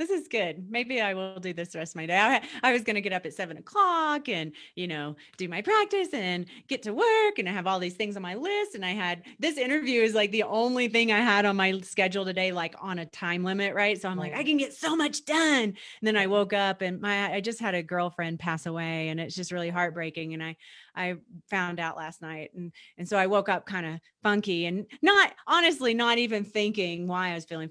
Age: 30-49